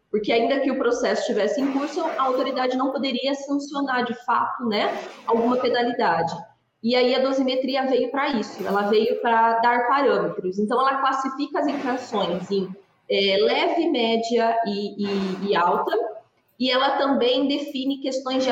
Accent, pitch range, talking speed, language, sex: Brazilian, 215-265 Hz, 150 wpm, Portuguese, female